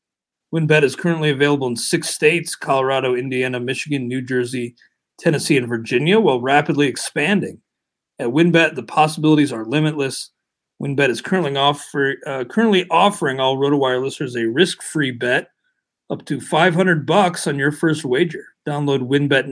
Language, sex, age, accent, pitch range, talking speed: English, male, 40-59, American, 135-170 Hz, 150 wpm